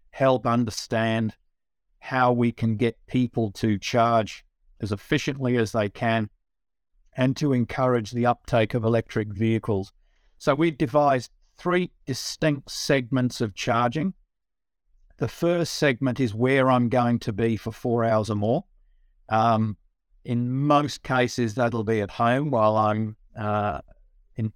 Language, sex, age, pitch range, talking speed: English, male, 50-69, 110-130 Hz, 135 wpm